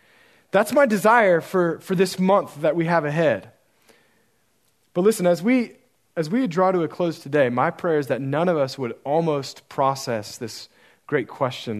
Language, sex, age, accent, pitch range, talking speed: English, male, 40-59, American, 145-220 Hz, 180 wpm